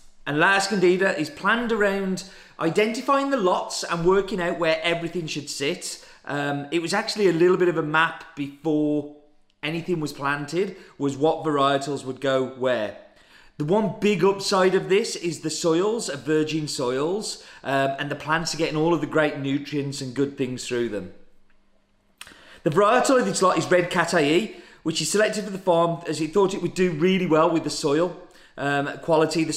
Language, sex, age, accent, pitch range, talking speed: English, male, 30-49, British, 150-195 Hz, 185 wpm